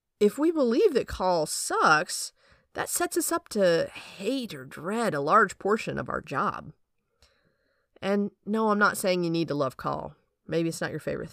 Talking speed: 185 wpm